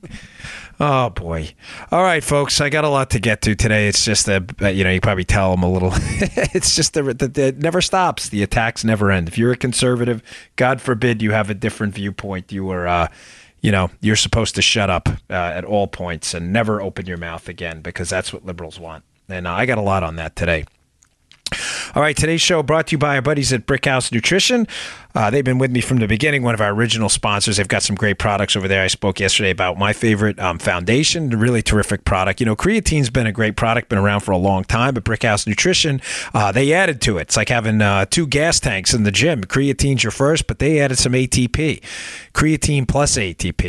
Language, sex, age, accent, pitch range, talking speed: English, male, 30-49, American, 95-135 Hz, 225 wpm